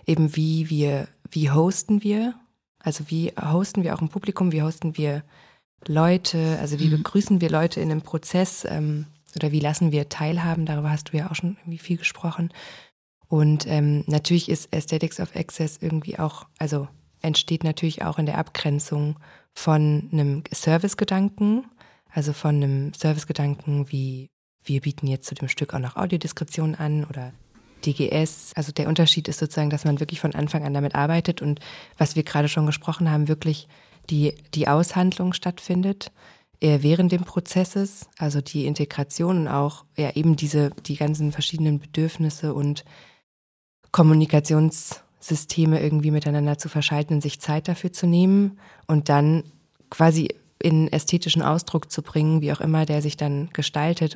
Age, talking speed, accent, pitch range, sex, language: 20-39, 155 wpm, German, 150-165 Hz, female, German